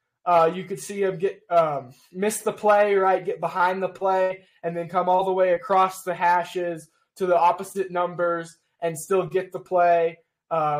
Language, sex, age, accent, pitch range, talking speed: English, male, 20-39, American, 165-185 Hz, 190 wpm